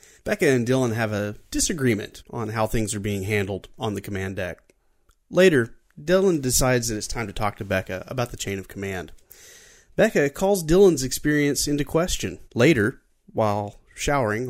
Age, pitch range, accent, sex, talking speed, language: 30-49, 100-145 Hz, American, male, 165 wpm, English